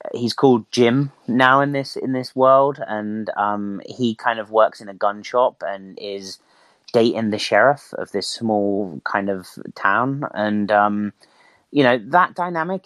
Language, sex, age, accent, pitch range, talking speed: English, male, 30-49, British, 105-125 Hz, 170 wpm